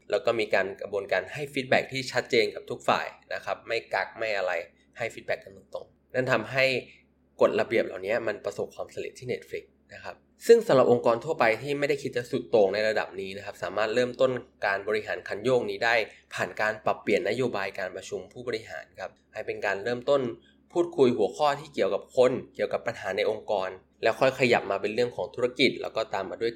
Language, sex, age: Thai, male, 20-39